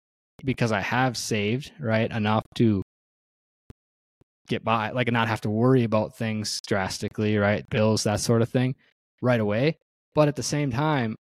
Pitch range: 105-130 Hz